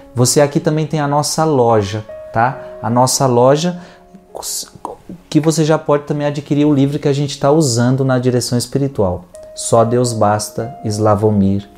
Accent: Brazilian